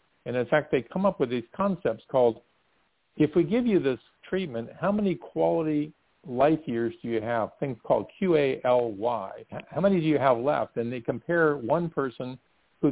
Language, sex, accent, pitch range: English, male, American, 115-150 Hz